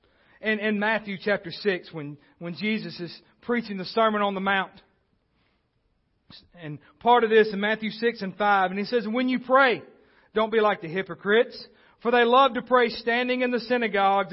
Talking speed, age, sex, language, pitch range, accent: 185 wpm, 40-59, male, English, 175-225 Hz, American